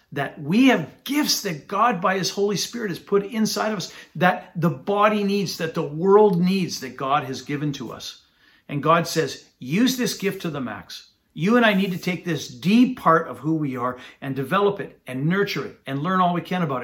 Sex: male